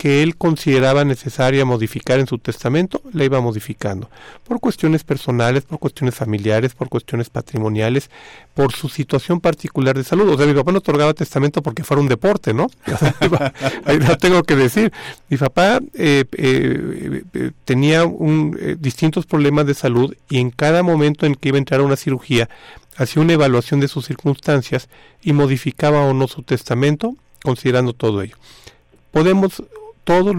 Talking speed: 160 wpm